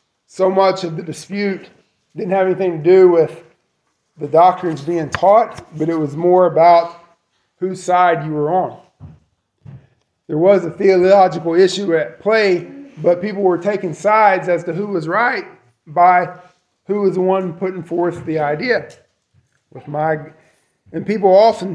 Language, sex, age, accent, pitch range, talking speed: English, male, 20-39, American, 160-195 Hz, 155 wpm